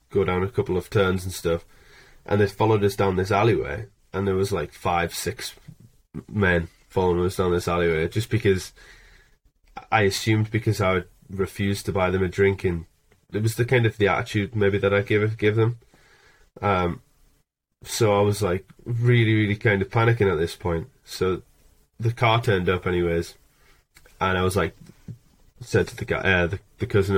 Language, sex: English, male